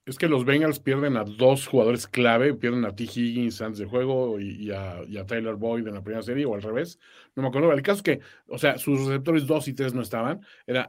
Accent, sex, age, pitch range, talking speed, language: Mexican, male, 40-59, 115-155 Hz, 260 wpm, Spanish